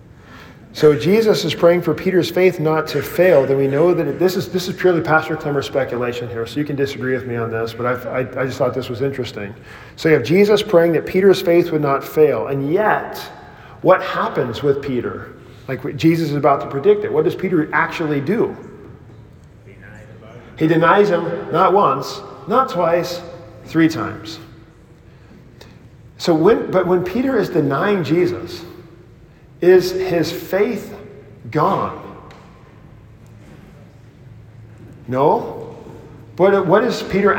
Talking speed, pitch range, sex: 150 wpm, 125-175 Hz, male